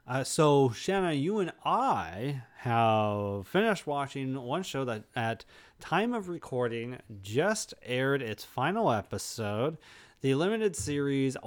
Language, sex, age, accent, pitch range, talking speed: English, male, 30-49, American, 115-155 Hz, 125 wpm